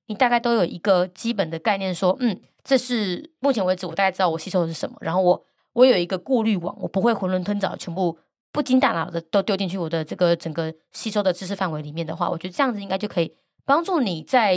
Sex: female